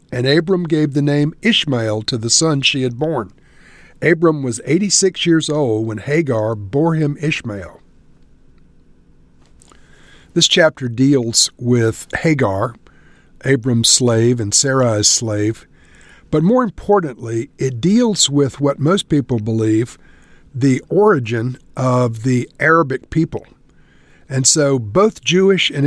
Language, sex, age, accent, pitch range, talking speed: English, male, 50-69, American, 120-160 Hz, 125 wpm